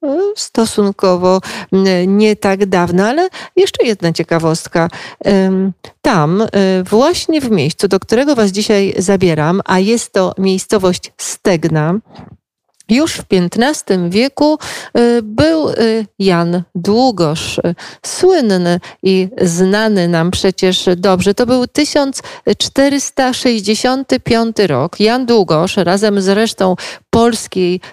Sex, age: female, 40-59